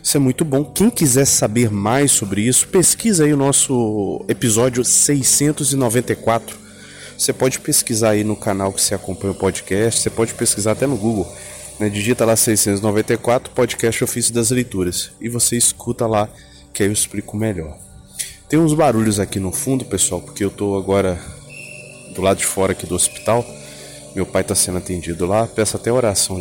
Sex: male